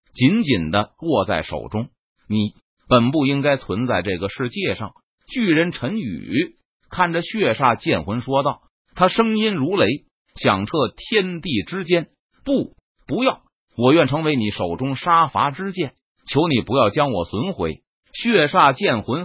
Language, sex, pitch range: Chinese, male, 125-185 Hz